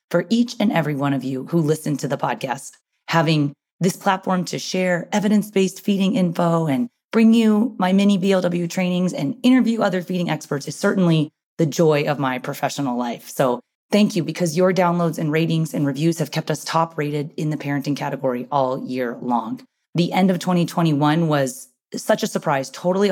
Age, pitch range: 30-49, 145-195 Hz